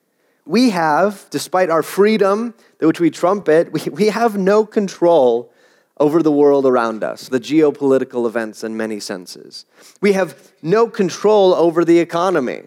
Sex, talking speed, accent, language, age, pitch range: male, 140 wpm, American, English, 30-49, 160-220 Hz